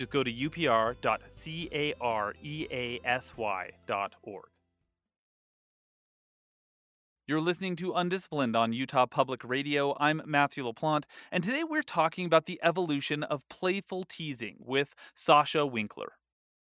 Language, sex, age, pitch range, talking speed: English, male, 30-49, 115-165 Hz, 100 wpm